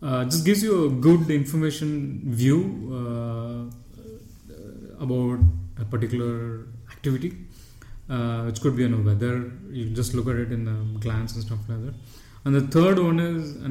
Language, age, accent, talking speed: English, 20-39, Indian, 165 wpm